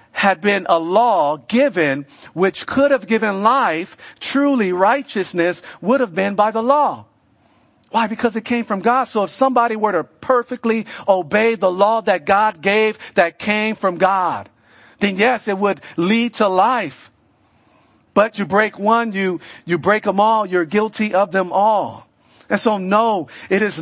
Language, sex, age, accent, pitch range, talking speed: English, male, 50-69, American, 170-220 Hz, 165 wpm